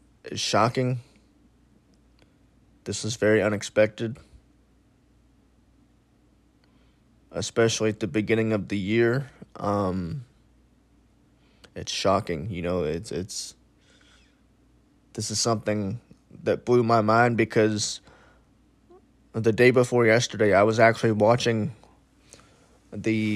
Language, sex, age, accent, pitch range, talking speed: English, male, 20-39, American, 105-115 Hz, 95 wpm